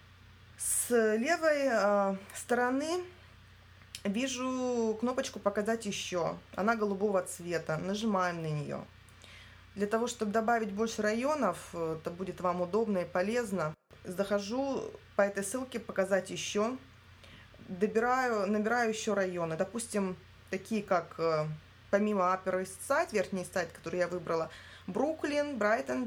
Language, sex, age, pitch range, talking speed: Russian, female, 20-39, 180-230 Hz, 115 wpm